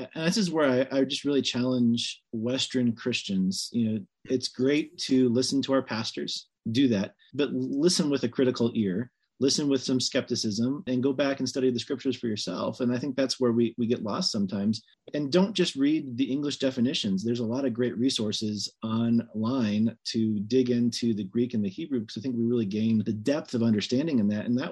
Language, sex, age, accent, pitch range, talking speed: English, male, 30-49, American, 115-135 Hz, 210 wpm